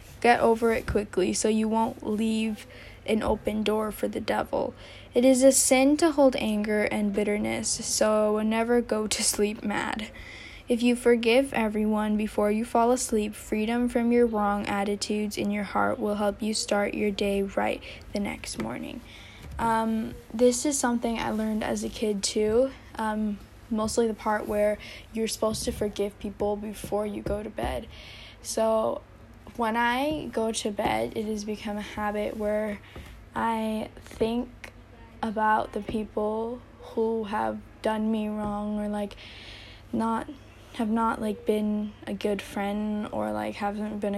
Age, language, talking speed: 10-29, German, 160 wpm